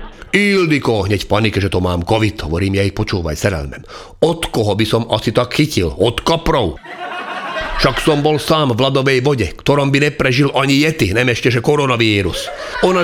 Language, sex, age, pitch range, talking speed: Slovak, male, 40-59, 105-145 Hz, 180 wpm